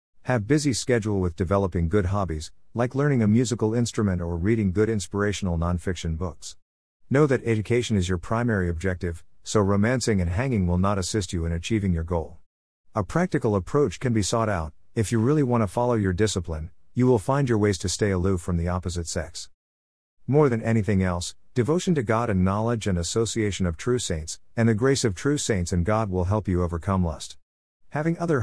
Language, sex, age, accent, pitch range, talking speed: English, male, 50-69, American, 85-115 Hz, 195 wpm